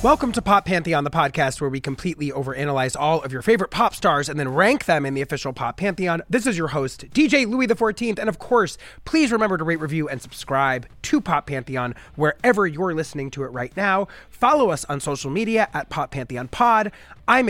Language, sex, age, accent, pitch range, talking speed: English, male, 30-49, American, 145-215 Hz, 215 wpm